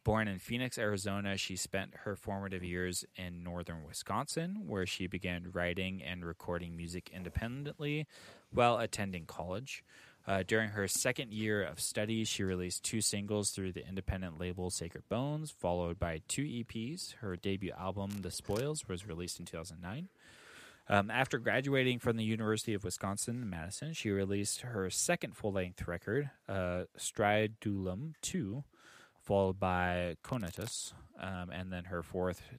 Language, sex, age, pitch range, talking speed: English, male, 20-39, 90-115 Hz, 145 wpm